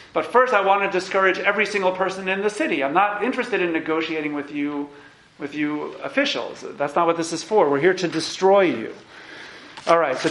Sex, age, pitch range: male, 40-59, 150-195 Hz